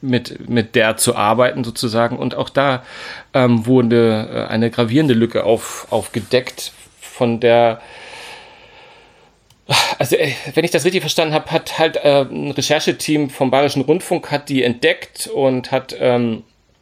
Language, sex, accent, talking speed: German, male, German, 145 wpm